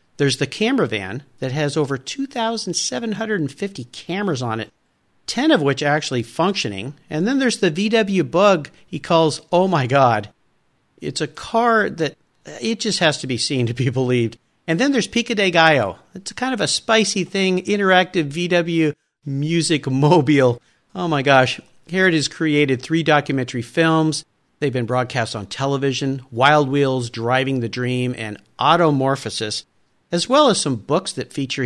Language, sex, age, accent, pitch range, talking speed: English, male, 50-69, American, 120-175 Hz, 170 wpm